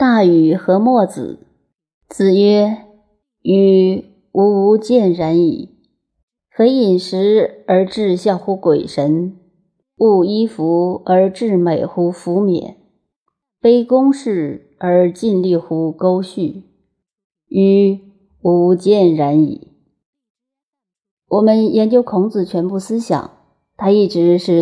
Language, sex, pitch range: Chinese, female, 170-215 Hz